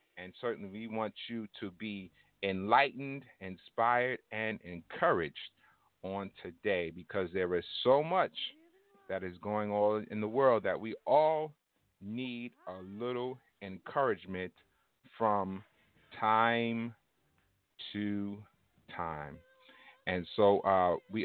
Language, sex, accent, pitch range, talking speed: English, male, American, 90-110 Hz, 115 wpm